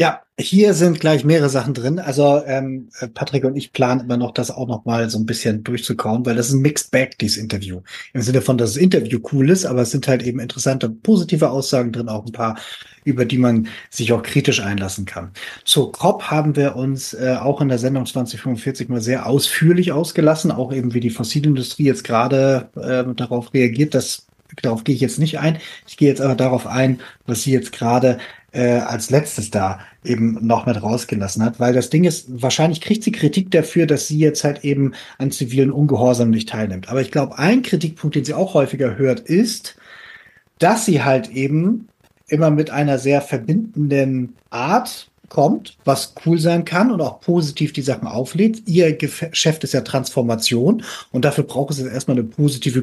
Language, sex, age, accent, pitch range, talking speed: German, male, 30-49, German, 125-155 Hz, 195 wpm